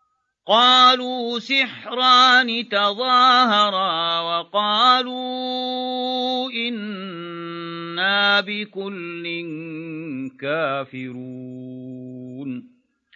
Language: English